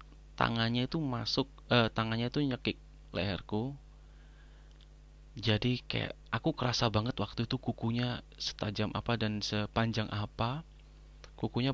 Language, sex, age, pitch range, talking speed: Indonesian, male, 30-49, 105-125 Hz, 110 wpm